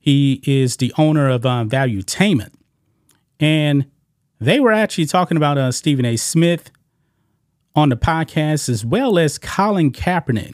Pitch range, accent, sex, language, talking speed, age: 130-160 Hz, American, male, English, 140 wpm, 30-49